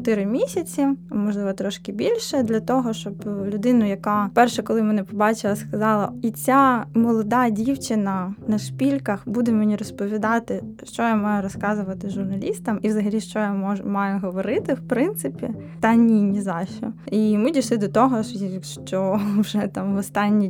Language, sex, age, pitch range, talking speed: Ukrainian, female, 20-39, 200-235 Hz, 160 wpm